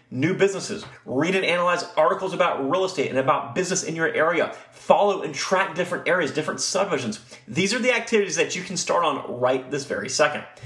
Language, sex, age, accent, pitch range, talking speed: English, male, 30-49, American, 155-230 Hz, 195 wpm